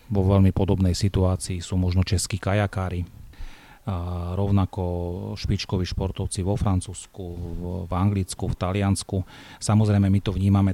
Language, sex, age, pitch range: Slovak, male, 30-49, 90-100 Hz